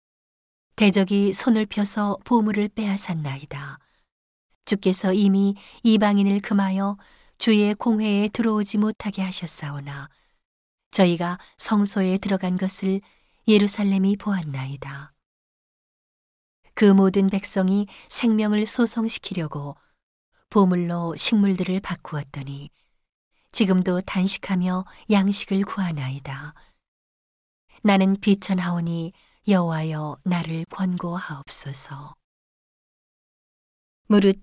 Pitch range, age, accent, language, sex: 165-205 Hz, 40-59, native, Korean, female